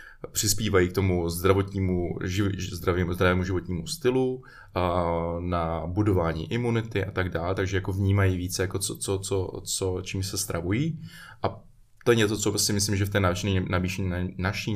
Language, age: Czech, 20-39